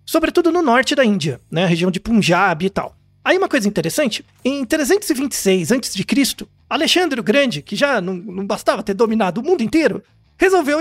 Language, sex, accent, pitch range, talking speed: Portuguese, male, Brazilian, 195-295 Hz, 185 wpm